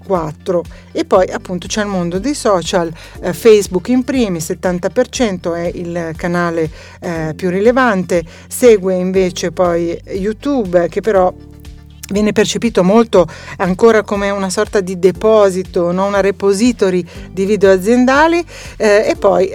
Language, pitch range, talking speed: Italian, 175-220 Hz, 130 wpm